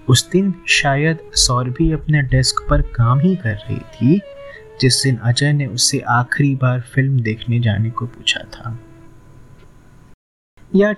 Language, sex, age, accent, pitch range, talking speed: Hindi, male, 30-49, native, 120-160 Hz, 150 wpm